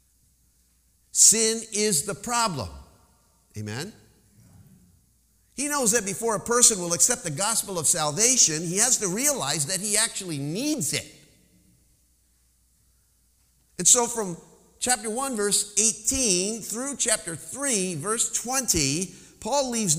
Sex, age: male, 50-69